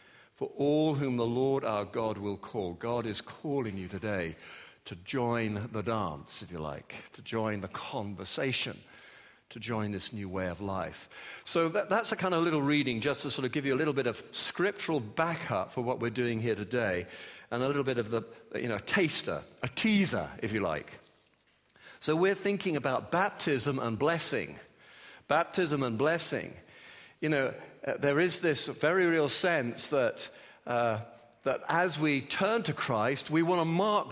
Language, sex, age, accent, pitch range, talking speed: English, male, 50-69, British, 120-170 Hz, 180 wpm